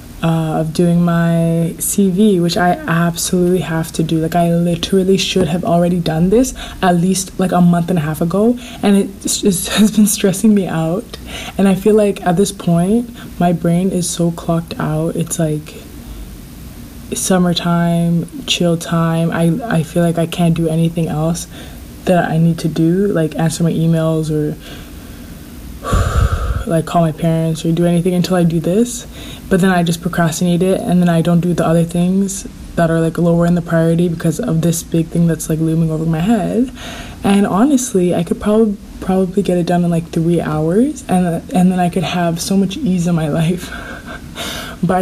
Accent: American